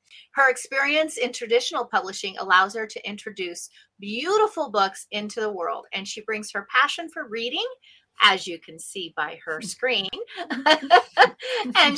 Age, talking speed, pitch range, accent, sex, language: 30-49, 145 wpm, 210-305 Hz, American, female, English